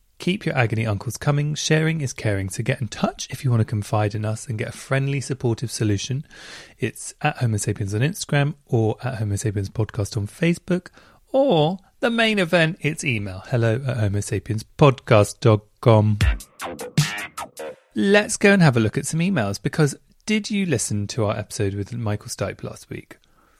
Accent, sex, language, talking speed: British, male, English, 175 wpm